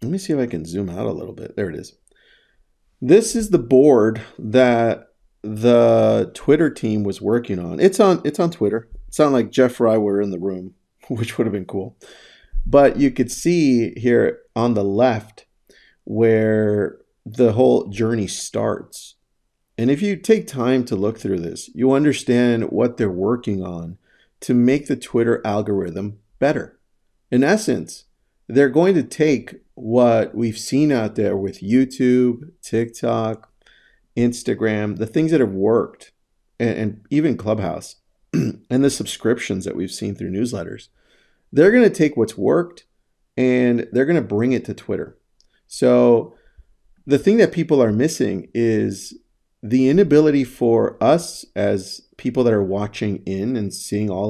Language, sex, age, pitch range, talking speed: English, male, 40-59, 105-130 Hz, 160 wpm